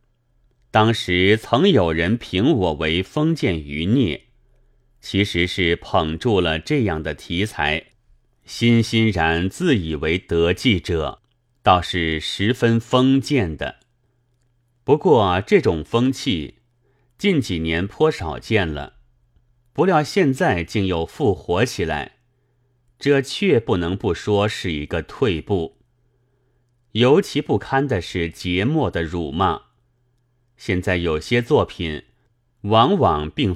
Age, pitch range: 30-49, 90-125 Hz